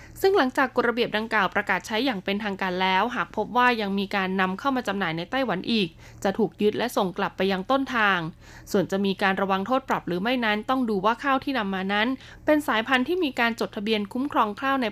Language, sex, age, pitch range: Thai, female, 20-39, 195-255 Hz